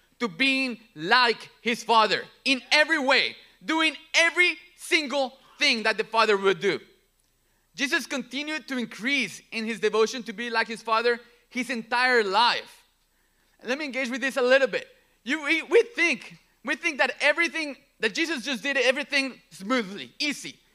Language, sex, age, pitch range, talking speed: English, male, 30-49, 235-305 Hz, 160 wpm